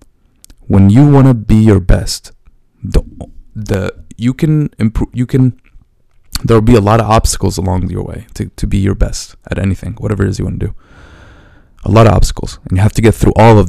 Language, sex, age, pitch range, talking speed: English, male, 20-39, 90-115 Hz, 210 wpm